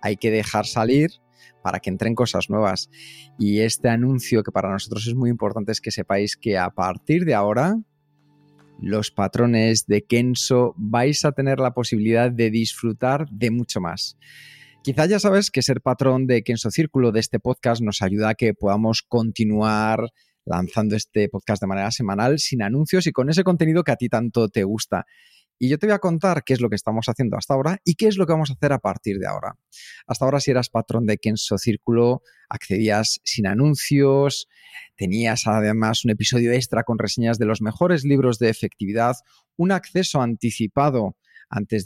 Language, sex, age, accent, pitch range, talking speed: Spanish, male, 30-49, Spanish, 110-140 Hz, 185 wpm